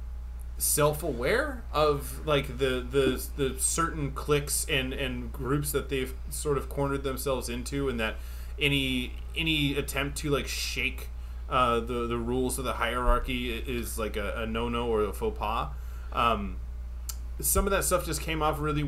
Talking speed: 165 wpm